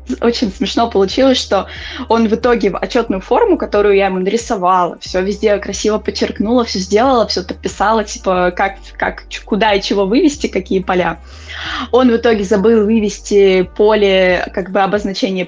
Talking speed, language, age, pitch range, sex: 155 wpm, Russian, 20-39, 195-240 Hz, female